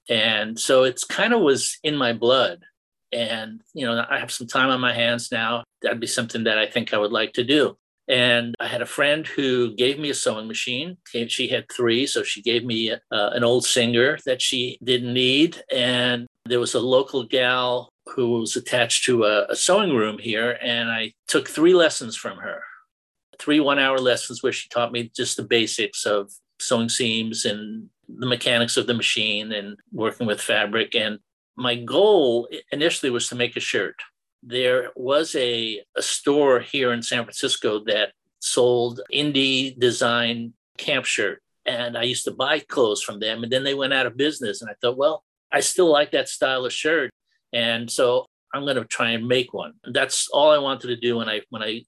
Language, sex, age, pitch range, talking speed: English, male, 50-69, 115-130 Hz, 200 wpm